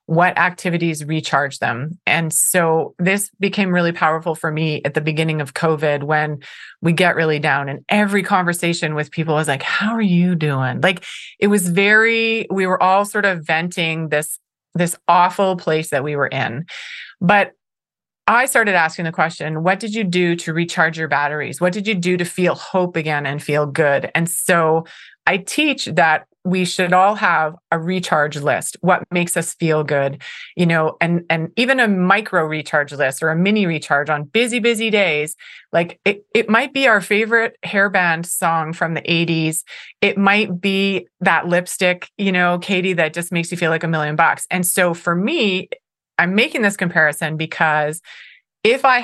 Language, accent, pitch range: English, American, 160-195 Hz